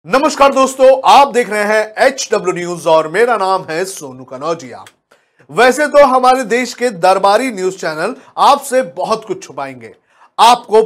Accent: native